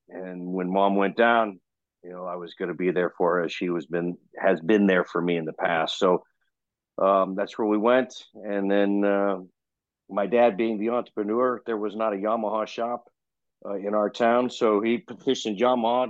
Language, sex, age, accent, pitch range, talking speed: English, male, 50-69, American, 95-110 Hz, 205 wpm